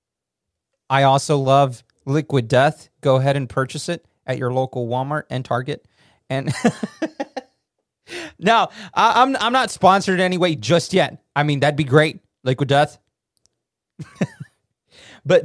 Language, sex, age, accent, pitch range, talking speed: English, male, 30-49, American, 120-170 Hz, 130 wpm